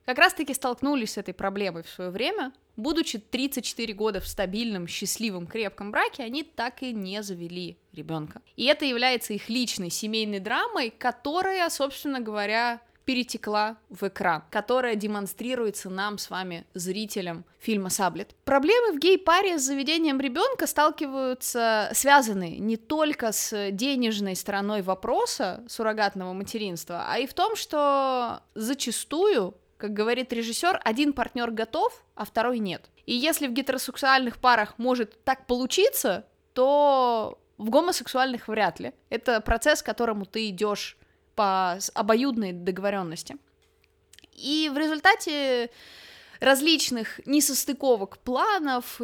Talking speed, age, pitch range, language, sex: 125 wpm, 20-39, 205-275 Hz, Russian, female